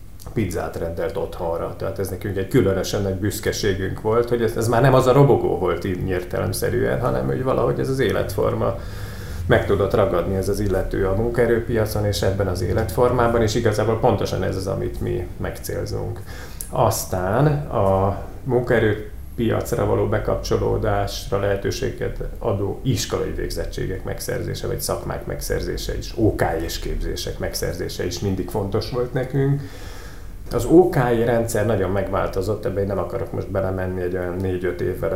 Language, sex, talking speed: Hungarian, male, 145 wpm